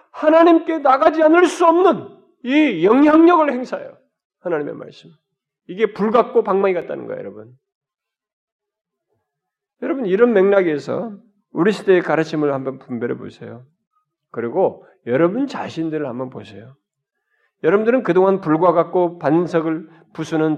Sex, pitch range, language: male, 175-280 Hz, Korean